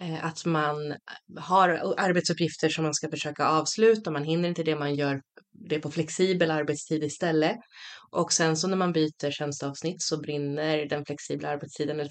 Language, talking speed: Swedish, 165 wpm